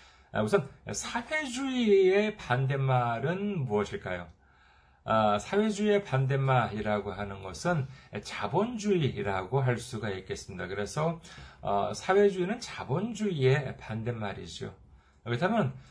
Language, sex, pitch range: Korean, male, 105-150 Hz